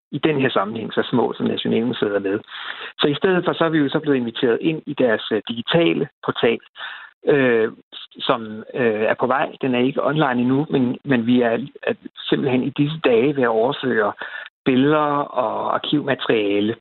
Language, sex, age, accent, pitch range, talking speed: Danish, male, 60-79, native, 125-155 Hz, 185 wpm